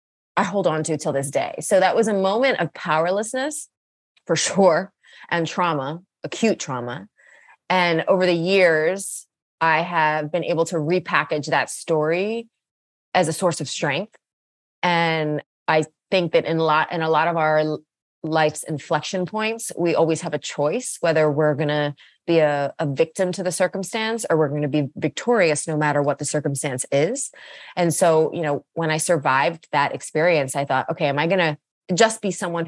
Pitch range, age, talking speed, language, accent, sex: 155-195 Hz, 20-39, 185 wpm, English, American, female